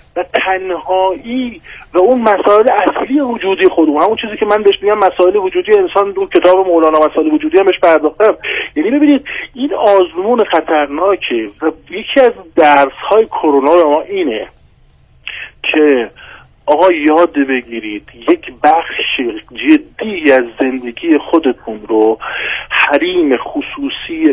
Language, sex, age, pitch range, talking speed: Persian, male, 50-69, 150-255 Hz, 125 wpm